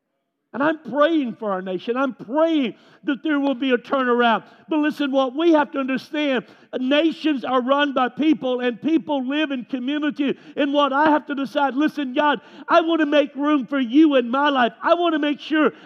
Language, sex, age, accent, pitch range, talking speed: English, male, 50-69, American, 235-280 Hz, 205 wpm